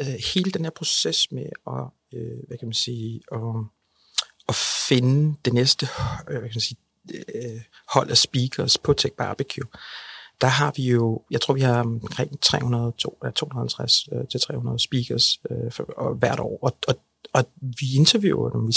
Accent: native